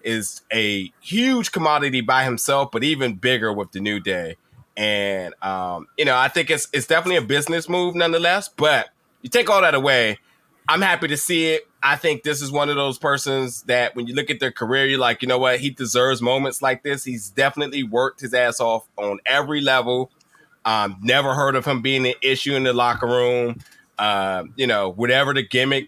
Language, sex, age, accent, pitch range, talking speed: English, male, 20-39, American, 120-150 Hz, 205 wpm